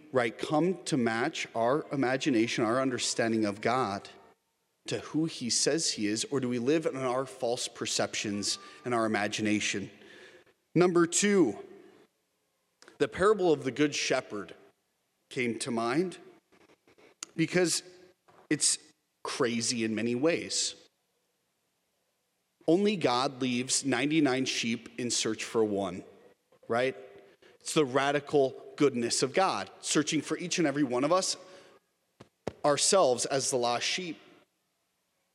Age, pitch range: 40-59, 125-190 Hz